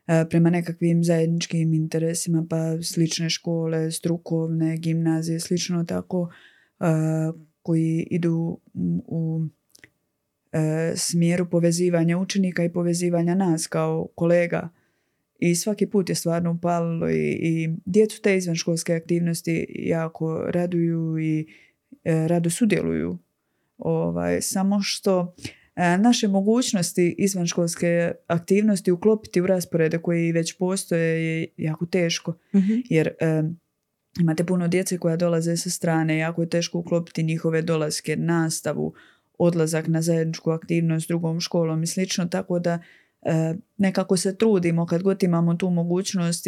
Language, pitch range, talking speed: Croatian, 160-175 Hz, 120 wpm